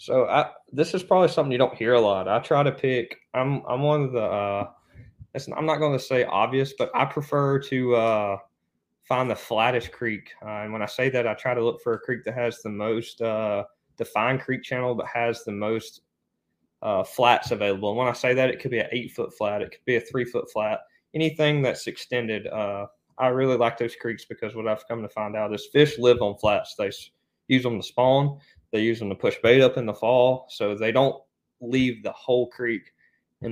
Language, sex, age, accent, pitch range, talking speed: English, male, 20-39, American, 110-130 Hz, 230 wpm